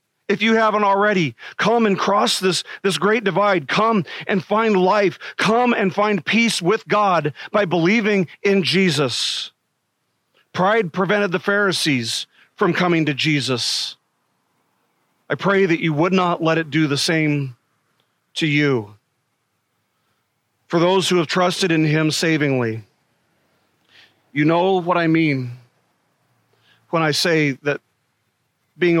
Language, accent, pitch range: English, American, 145-190 Hz